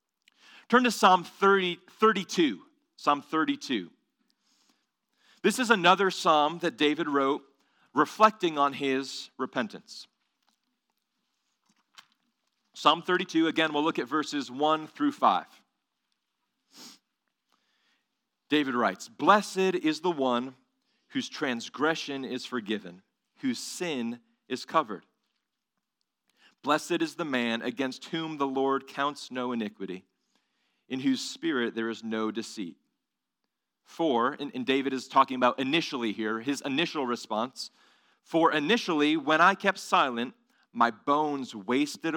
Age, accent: 40-59, American